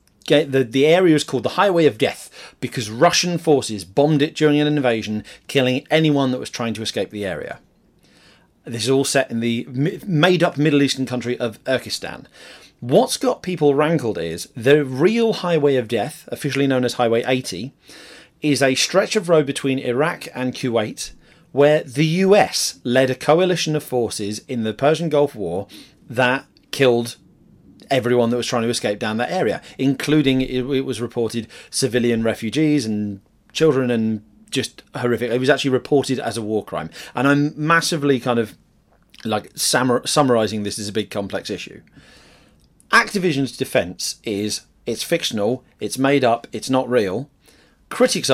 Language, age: English, 30-49